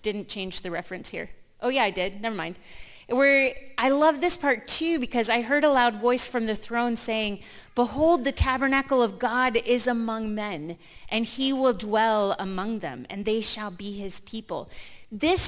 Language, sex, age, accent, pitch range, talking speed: English, female, 30-49, American, 205-260 Hz, 185 wpm